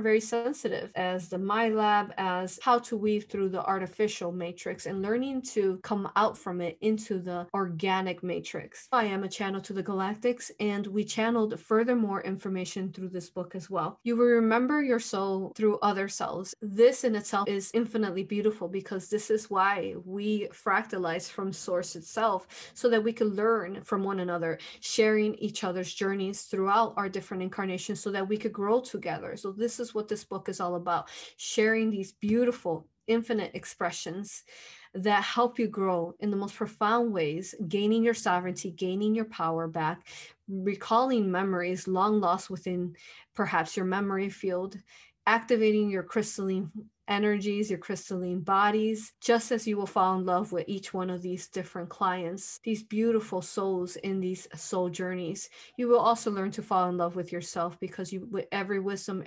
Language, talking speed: English, 170 wpm